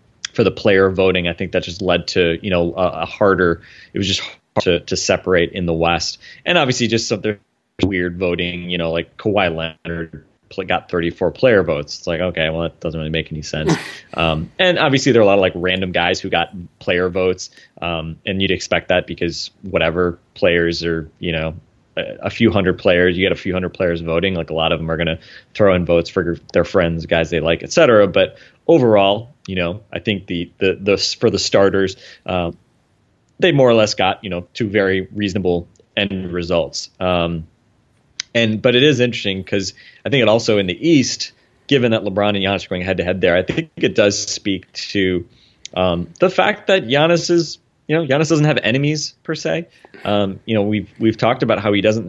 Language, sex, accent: English, male, American